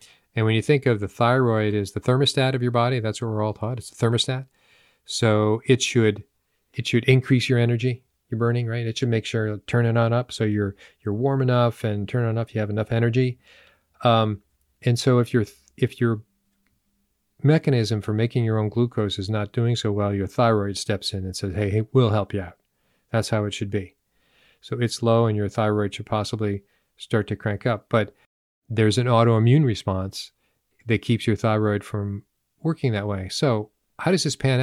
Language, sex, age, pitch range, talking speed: English, male, 40-59, 105-125 Hz, 205 wpm